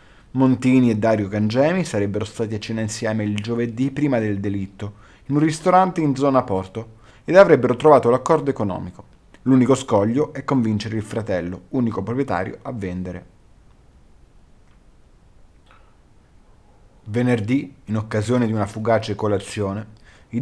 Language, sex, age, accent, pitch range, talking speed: Italian, male, 30-49, native, 100-125 Hz, 125 wpm